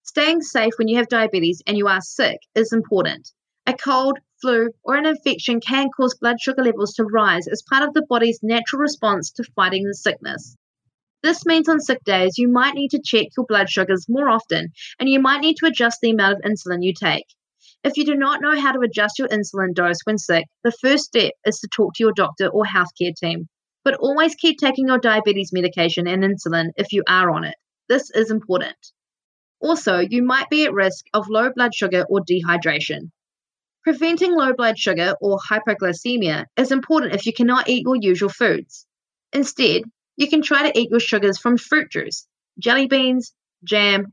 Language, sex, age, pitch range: English, female, 20-39, 195-270 Hz